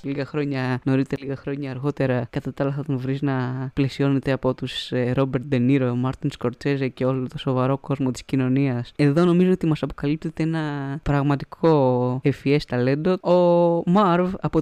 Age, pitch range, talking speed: 20-39, 130-160 Hz, 165 wpm